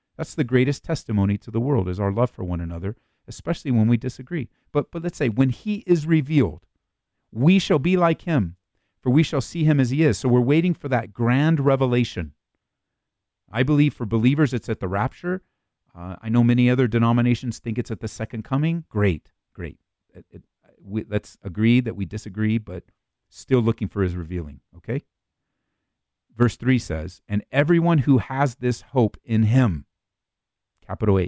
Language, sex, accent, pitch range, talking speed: English, male, American, 100-165 Hz, 180 wpm